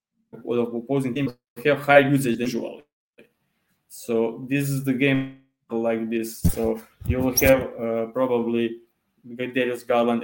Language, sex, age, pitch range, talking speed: English, male, 20-39, 115-135 Hz, 135 wpm